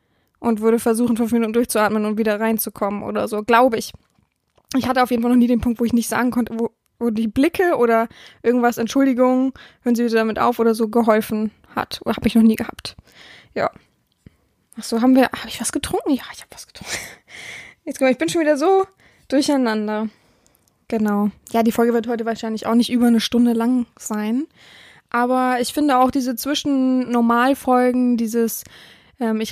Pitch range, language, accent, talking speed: 225-255 Hz, German, German, 195 wpm